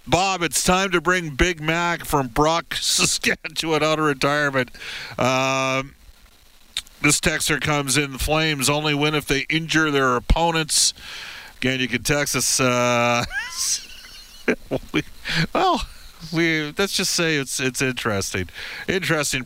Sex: male